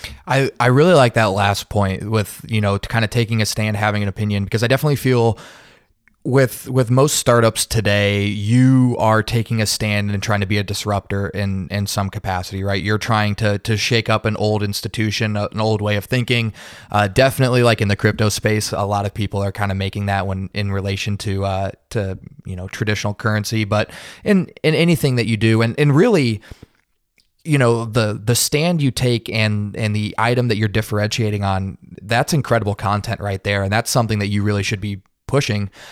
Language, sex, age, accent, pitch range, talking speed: English, male, 20-39, American, 100-120 Hz, 205 wpm